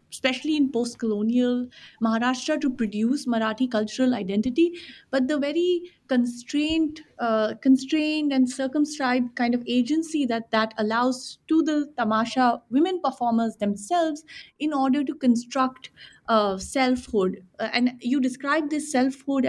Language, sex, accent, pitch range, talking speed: English, female, Indian, 230-280 Hz, 125 wpm